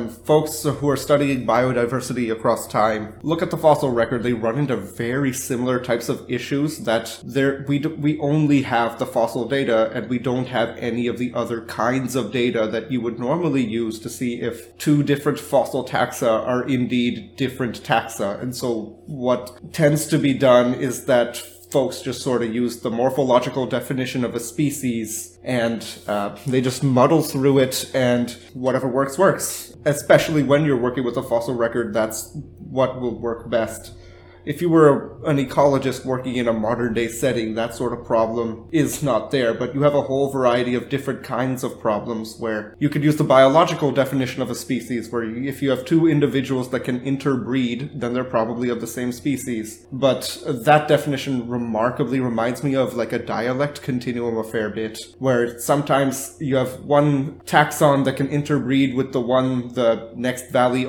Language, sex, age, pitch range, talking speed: English, male, 20-39, 120-140 Hz, 185 wpm